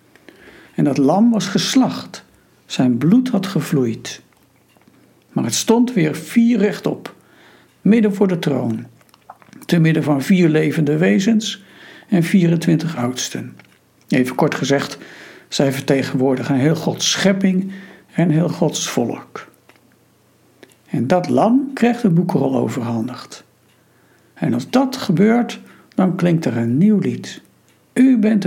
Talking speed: 125 wpm